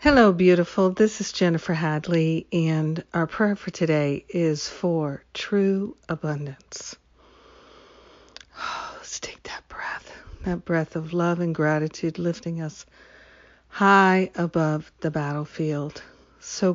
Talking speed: 115 wpm